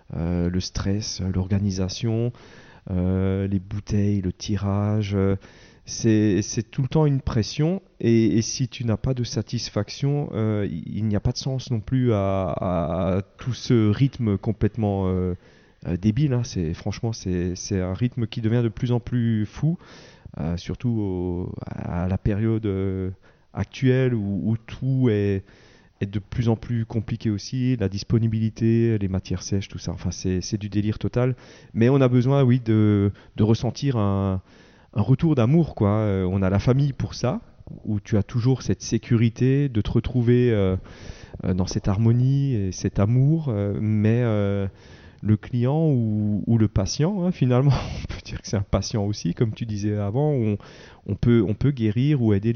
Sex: male